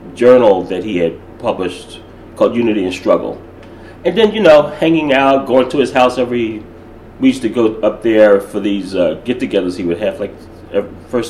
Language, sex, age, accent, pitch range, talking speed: English, male, 30-49, American, 105-135 Hz, 190 wpm